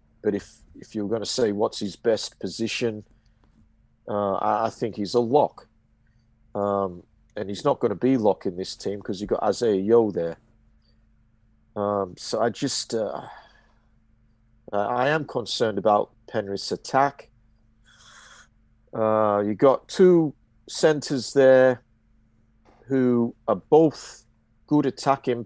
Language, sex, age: English, male, 50-69